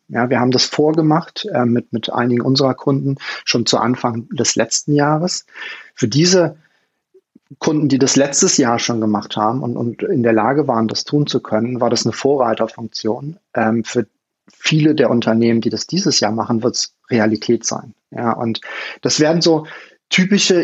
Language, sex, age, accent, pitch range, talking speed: German, male, 30-49, German, 120-150 Hz, 175 wpm